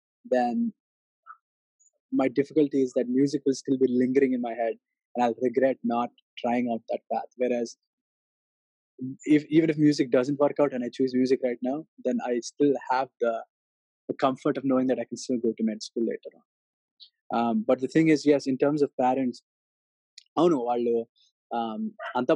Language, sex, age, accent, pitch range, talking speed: Telugu, male, 20-39, native, 120-145 Hz, 190 wpm